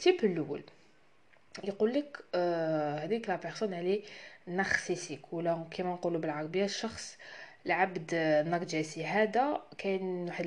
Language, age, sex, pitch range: Arabic, 20-39, female, 160-195 Hz